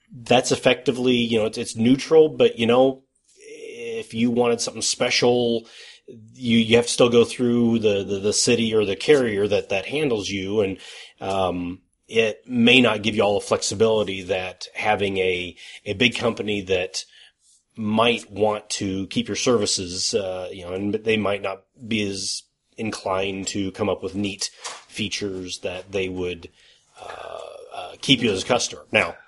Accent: American